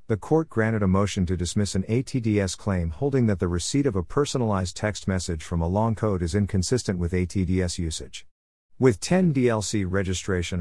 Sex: male